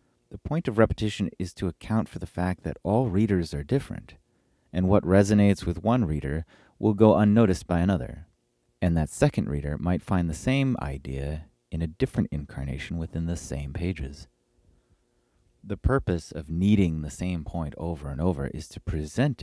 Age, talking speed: 30-49, 175 wpm